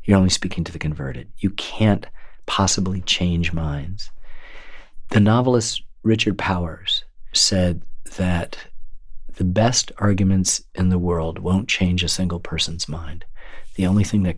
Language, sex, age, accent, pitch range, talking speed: English, male, 40-59, American, 85-100 Hz, 140 wpm